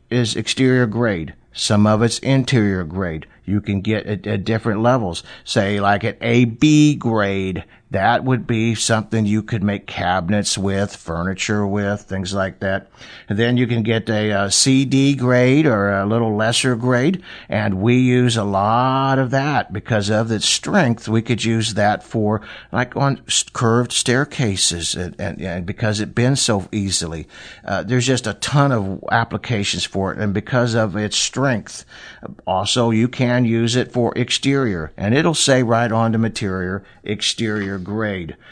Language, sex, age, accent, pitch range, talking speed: English, male, 60-79, American, 100-125 Hz, 165 wpm